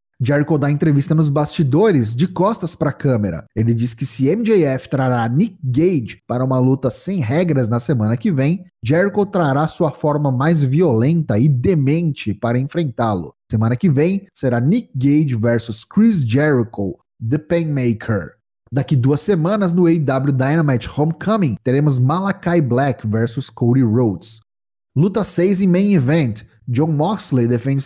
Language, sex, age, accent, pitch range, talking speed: Portuguese, male, 20-39, Brazilian, 130-180 Hz, 150 wpm